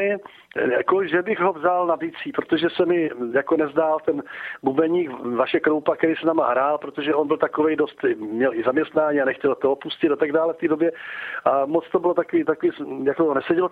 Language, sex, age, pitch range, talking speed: Slovak, male, 50-69, 155-185 Hz, 195 wpm